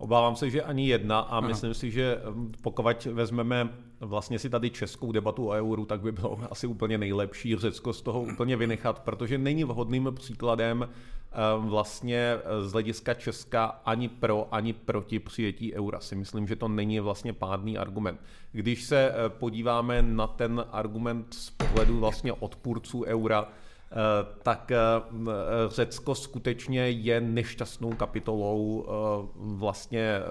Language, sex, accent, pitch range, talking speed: Czech, male, native, 110-120 Hz, 135 wpm